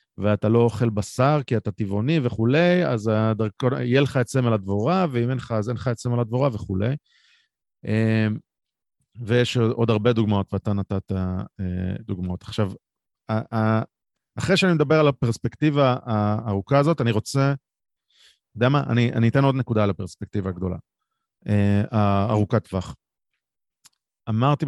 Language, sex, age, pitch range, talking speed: Hebrew, male, 30-49, 105-135 Hz, 135 wpm